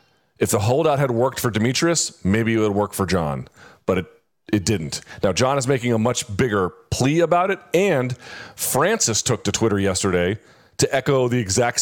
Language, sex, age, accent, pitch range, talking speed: English, male, 40-59, American, 100-130 Hz, 190 wpm